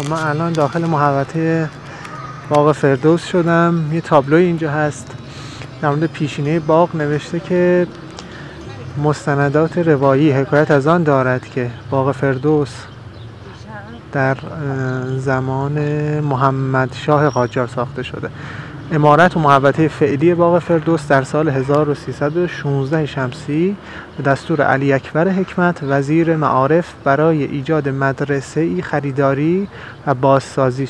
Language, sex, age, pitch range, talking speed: English, male, 30-49, 135-160 Hz, 105 wpm